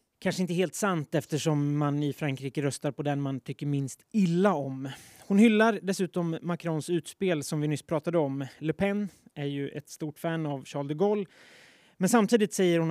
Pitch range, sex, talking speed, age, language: 145-180 Hz, male, 190 wpm, 20-39, Swedish